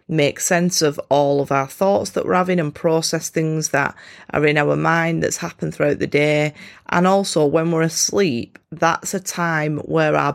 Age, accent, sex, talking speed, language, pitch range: 30-49, British, female, 190 wpm, English, 145-170 Hz